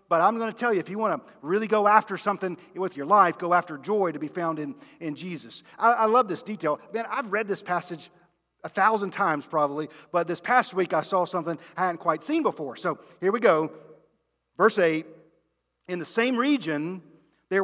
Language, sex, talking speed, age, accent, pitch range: English, male, 215 wpm, 40-59, American, 165-230 Hz